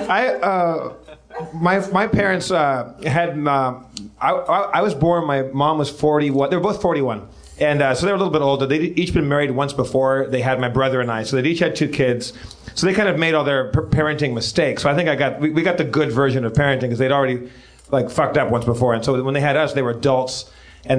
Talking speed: 250 wpm